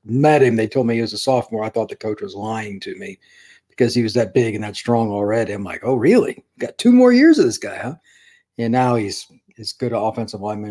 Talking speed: 260 wpm